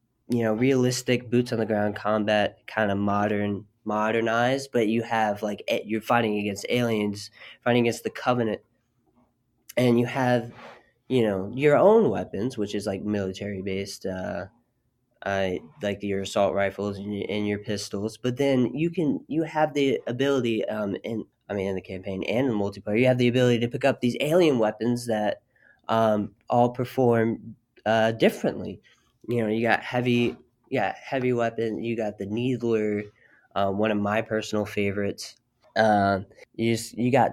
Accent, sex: American, male